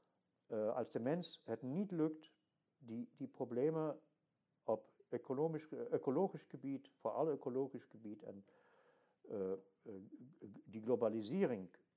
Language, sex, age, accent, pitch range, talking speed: Dutch, male, 60-79, German, 110-165 Hz, 100 wpm